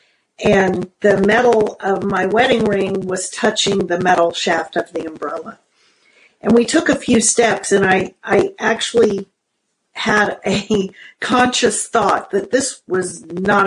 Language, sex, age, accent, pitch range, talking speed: English, female, 50-69, American, 195-235 Hz, 145 wpm